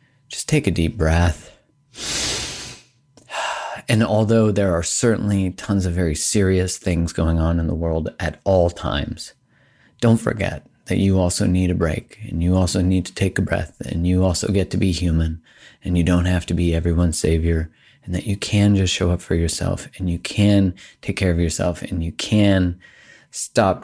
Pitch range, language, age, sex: 85-105 Hz, English, 30-49, male